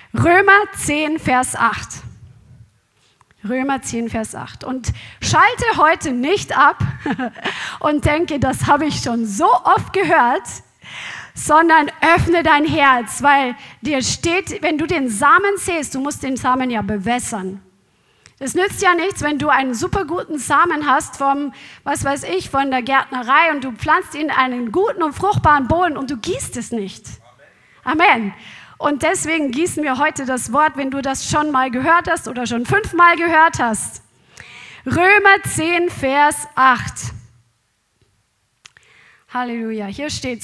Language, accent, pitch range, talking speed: German, German, 245-325 Hz, 150 wpm